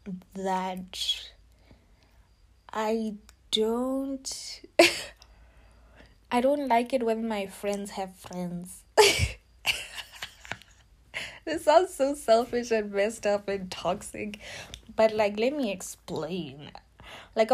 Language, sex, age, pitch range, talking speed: English, female, 20-39, 190-230 Hz, 90 wpm